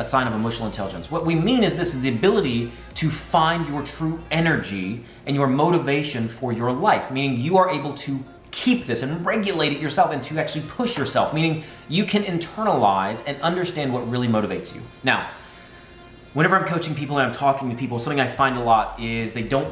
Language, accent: English, American